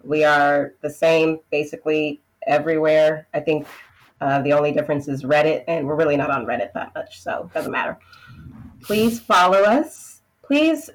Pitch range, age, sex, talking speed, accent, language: 150-200 Hz, 30-49, female, 165 wpm, American, English